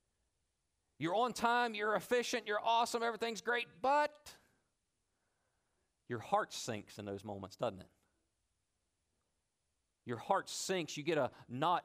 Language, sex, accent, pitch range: English, male, American, 100-160 Hz